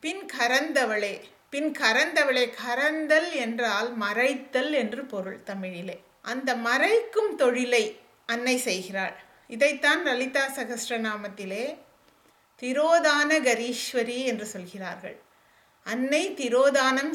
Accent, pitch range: Indian, 235-285 Hz